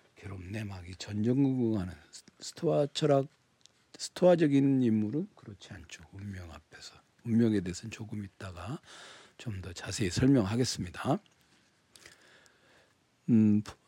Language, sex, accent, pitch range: Korean, male, native, 95-125 Hz